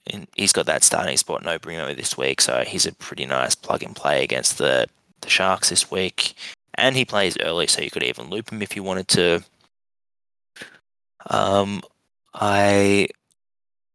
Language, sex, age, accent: English, male, 20-39, Australian